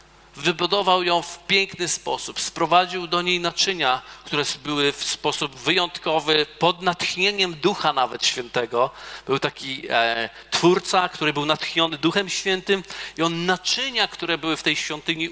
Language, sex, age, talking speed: Polish, male, 40-59, 135 wpm